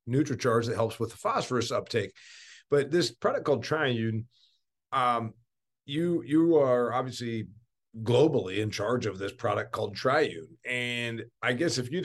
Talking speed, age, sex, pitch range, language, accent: 150 wpm, 40-59, male, 110-135 Hz, English, American